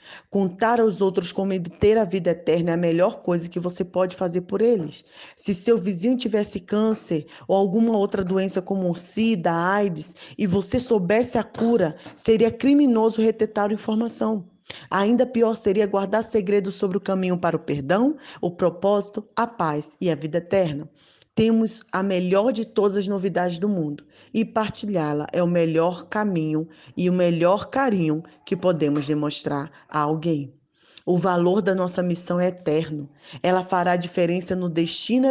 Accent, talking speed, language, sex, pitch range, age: Brazilian, 165 wpm, Portuguese, female, 165-205 Hz, 20-39